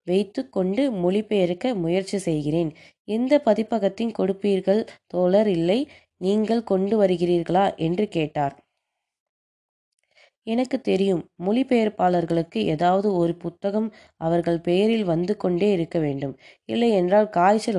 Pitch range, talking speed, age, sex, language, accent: 170-225 Hz, 100 wpm, 20-39, female, Tamil, native